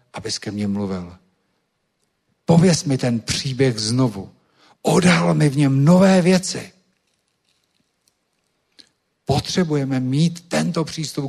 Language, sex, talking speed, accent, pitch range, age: Czech, male, 100 wpm, native, 135-175 Hz, 50-69